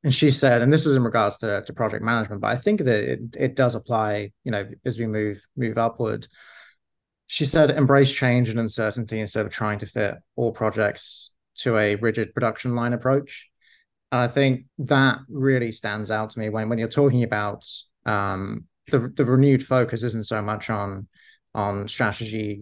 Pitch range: 105-130 Hz